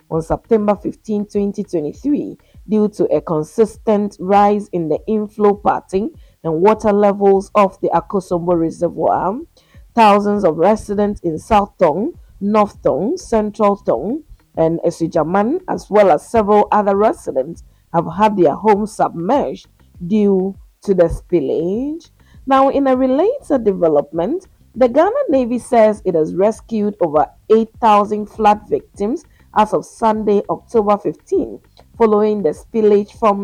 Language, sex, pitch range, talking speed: English, female, 180-220 Hz, 130 wpm